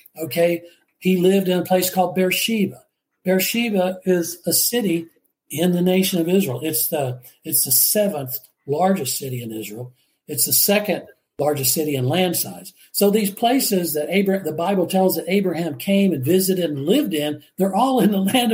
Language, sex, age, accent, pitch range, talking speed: English, male, 60-79, American, 150-190 Hz, 180 wpm